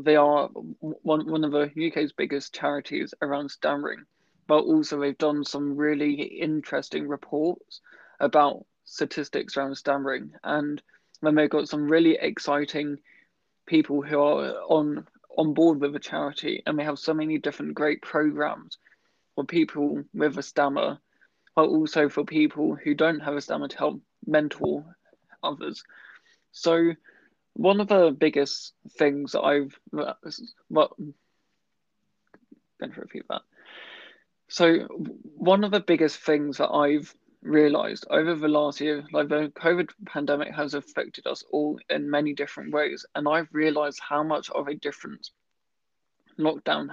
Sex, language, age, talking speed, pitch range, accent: male, English, 20-39, 140 wpm, 145-155 Hz, British